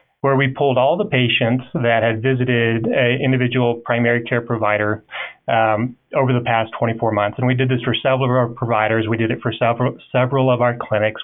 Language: English